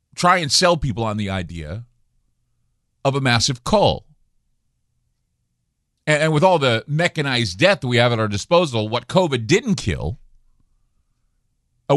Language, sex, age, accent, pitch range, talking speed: English, male, 50-69, American, 120-150 Hz, 135 wpm